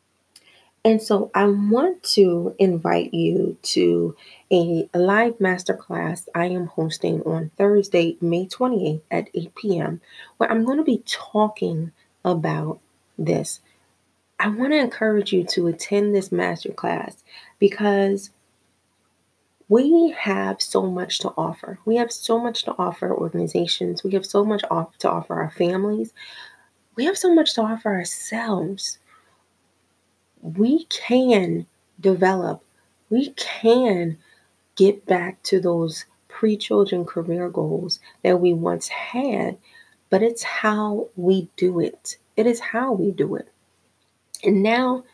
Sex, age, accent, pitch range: female, 30-49, American, 165-220 Hz